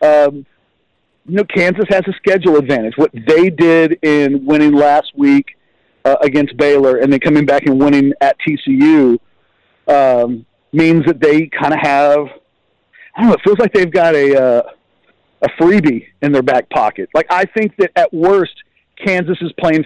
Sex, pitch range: male, 145-215 Hz